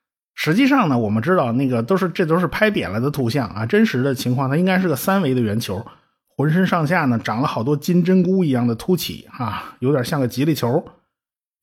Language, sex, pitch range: Chinese, male, 120-185 Hz